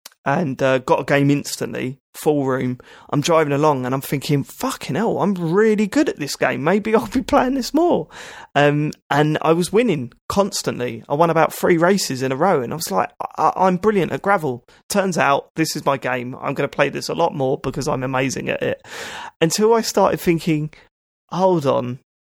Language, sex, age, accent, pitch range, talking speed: English, male, 20-39, British, 135-170 Hz, 200 wpm